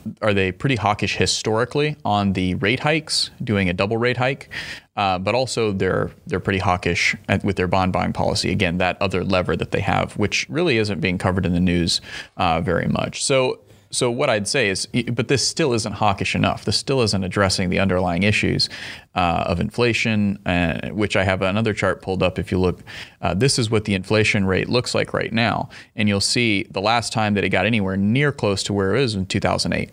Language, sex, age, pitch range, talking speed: English, male, 30-49, 95-110 Hz, 215 wpm